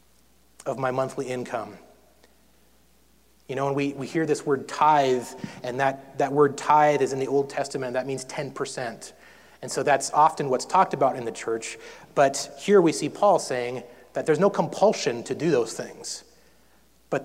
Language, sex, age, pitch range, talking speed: English, male, 30-49, 125-145 Hz, 180 wpm